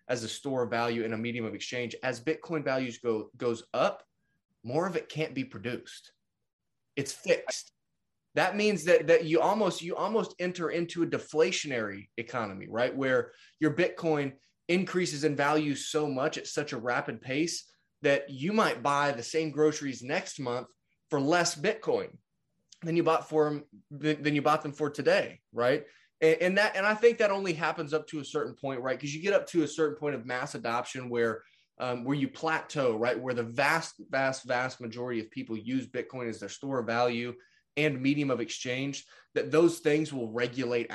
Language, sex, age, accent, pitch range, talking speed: English, male, 20-39, American, 125-160 Hz, 190 wpm